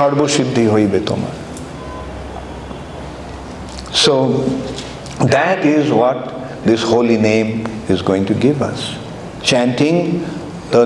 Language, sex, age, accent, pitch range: English, male, 50-69, Indian, 110-155 Hz